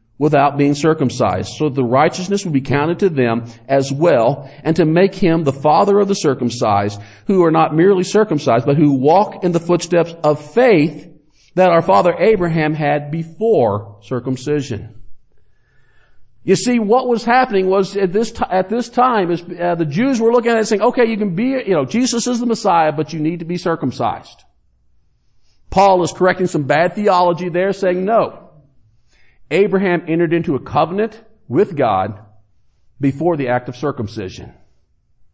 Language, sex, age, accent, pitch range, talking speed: English, male, 50-69, American, 130-205 Hz, 170 wpm